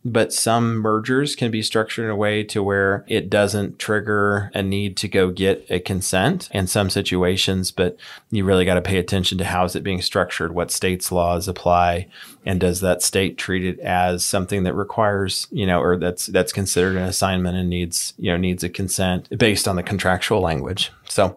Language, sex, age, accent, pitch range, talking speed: English, male, 30-49, American, 90-110 Hz, 200 wpm